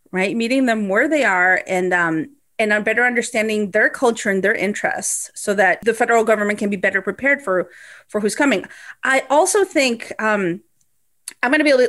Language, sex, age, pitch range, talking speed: English, female, 30-49, 205-285 Hz, 195 wpm